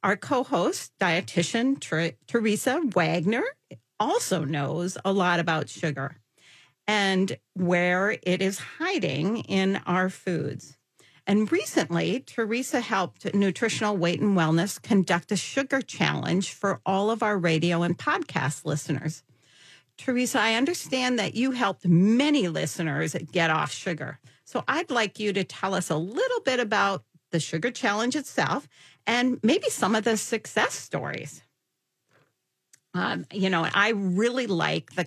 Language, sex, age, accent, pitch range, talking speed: English, female, 50-69, American, 165-230 Hz, 135 wpm